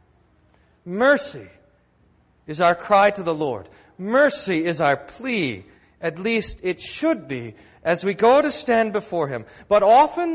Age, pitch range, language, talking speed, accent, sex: 40-59, 160-250 Hz, English, 145 wpm, American, male